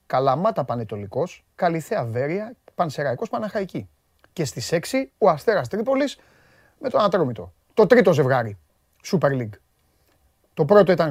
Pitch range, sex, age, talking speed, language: 130-205 Hz, male, 30-49, 125 wpm, Greek